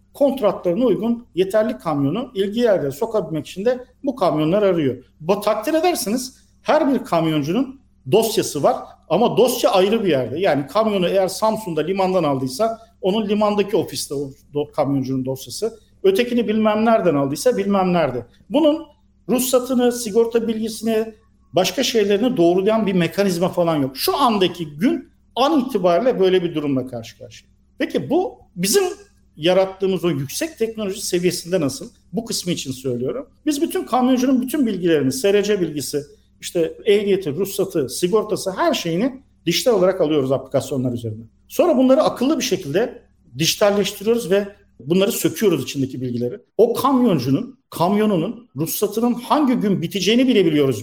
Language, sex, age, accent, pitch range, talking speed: Turkish, male, 50-69, native, 160-235 Hz, 135 wpm